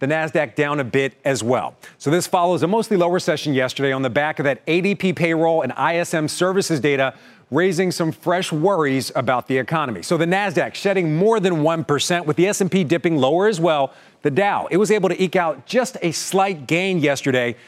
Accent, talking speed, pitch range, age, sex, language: American, 205 wpm, 145-185 Hz, 40-59, male, English